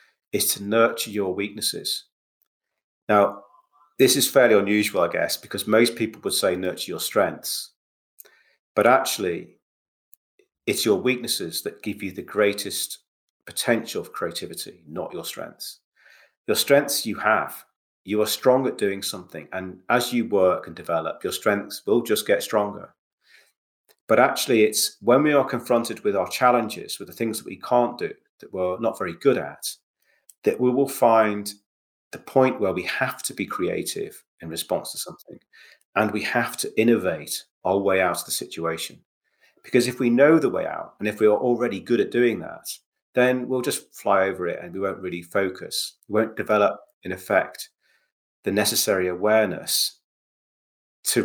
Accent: British